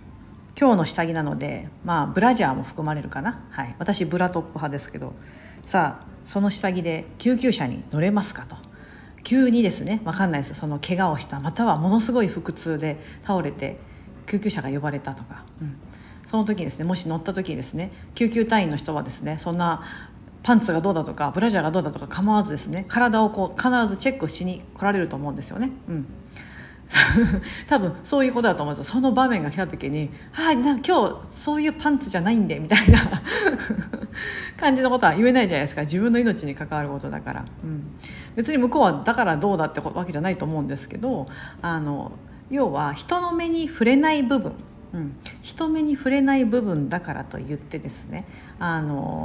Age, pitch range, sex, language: 50-69, 155-245 Hz, female, Japanese